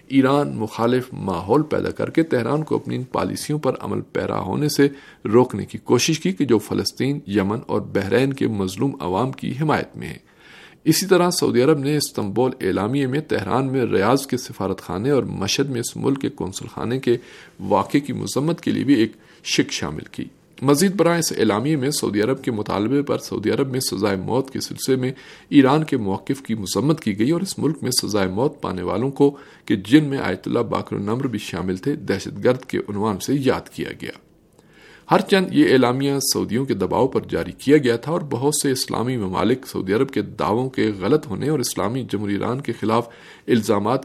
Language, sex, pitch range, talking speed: Urdu, male, 105-145 Hz, 200 wpm